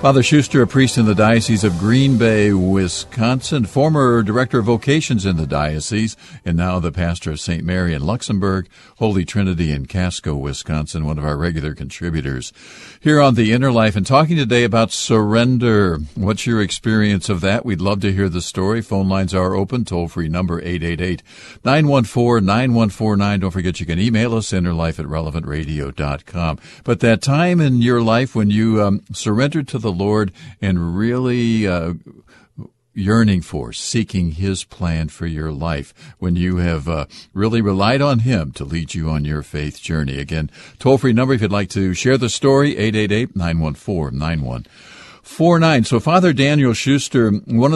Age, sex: 60-79, male